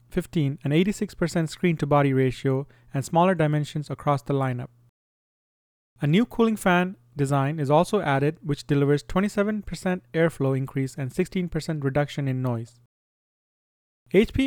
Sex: male